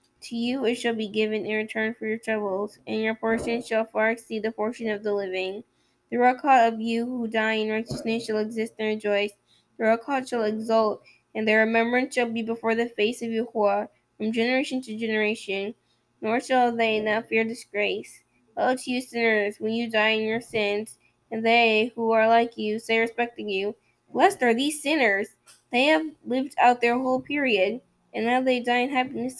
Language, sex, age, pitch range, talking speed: English, female, 10-29, 220-240 Hz, 195 wpm